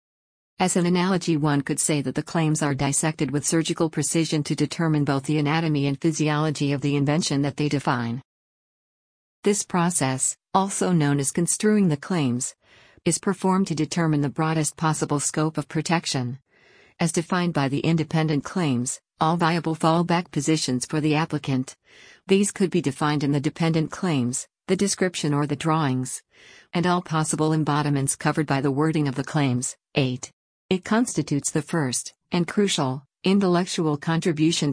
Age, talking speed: 50-69, 155 wpm